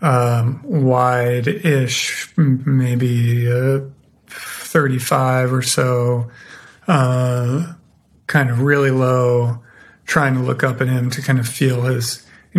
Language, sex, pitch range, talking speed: English, male, 125-140 Hz, 115 wpm